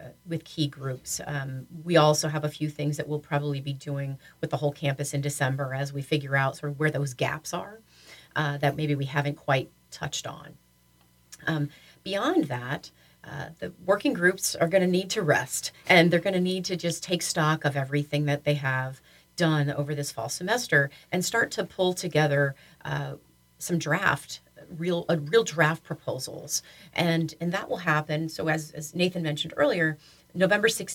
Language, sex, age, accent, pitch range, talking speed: English, female, 40-59, American, 145-175 Hz, 185 wpm